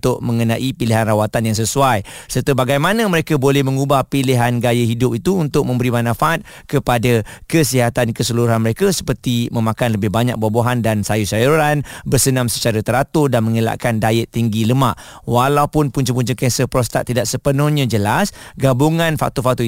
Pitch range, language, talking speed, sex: 115-145 Hz, Malay, 145 wpm, male